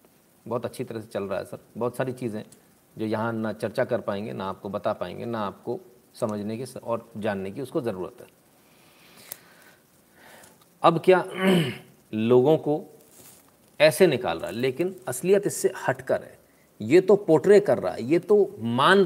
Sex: male